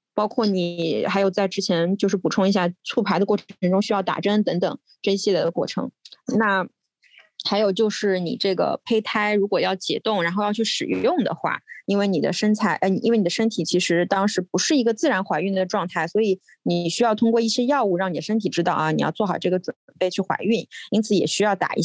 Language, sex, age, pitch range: Chinese, female, 20-39, 175-220 Hz